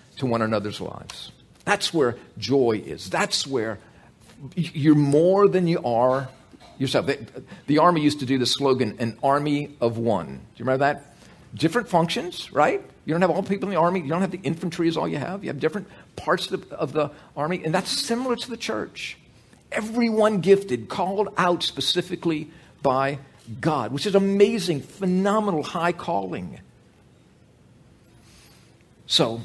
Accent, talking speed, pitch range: American, 165 wpm, 140-195 Hz